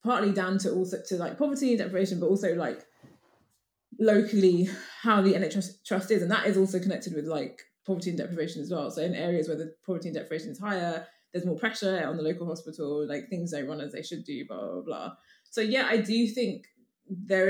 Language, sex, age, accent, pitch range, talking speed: English, female, 20-39, British, 170-210 Hz, 225 wpm